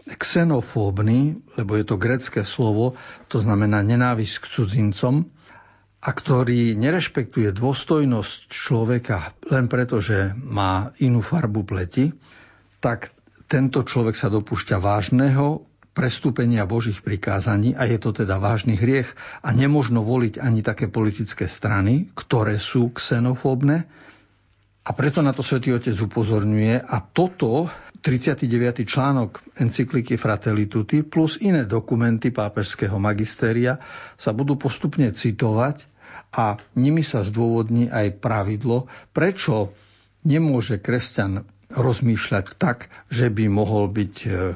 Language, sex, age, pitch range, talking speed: Slovak, male, 60-79, 105-130 Hz, 115 wpm